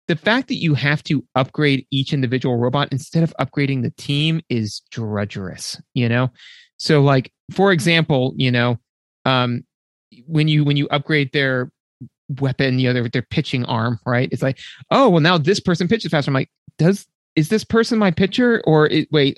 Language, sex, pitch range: English, male, 130-165 Hz